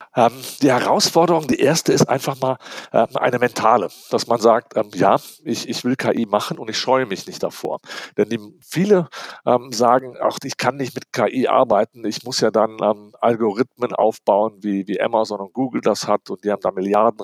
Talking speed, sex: 180 wpm, male